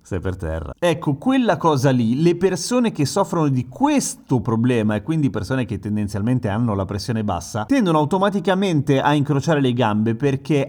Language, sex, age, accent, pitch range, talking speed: Italian, male, 30-49, native, 115-150 Hz, 170 wpm